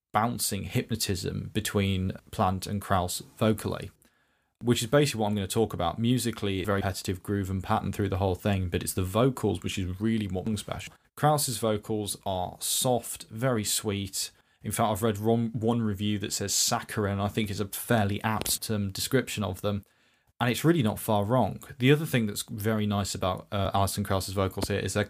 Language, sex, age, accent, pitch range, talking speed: English, male, 10-29, British, 100-115 Hz, 195 wpm